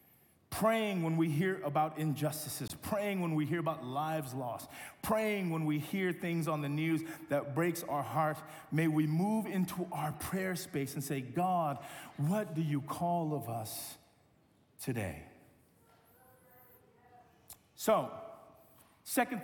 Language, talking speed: English, 135 wpm